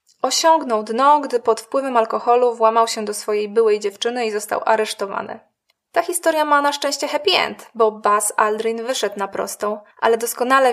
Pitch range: 220-280 Hz